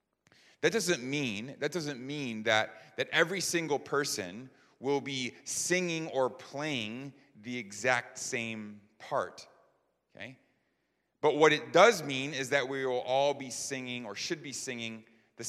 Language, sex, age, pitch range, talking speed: English, male, 30-49, 115-140 Hz, 145 wpm